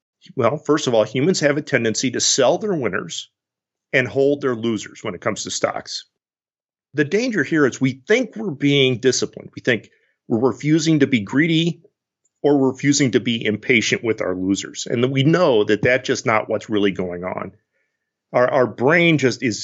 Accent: American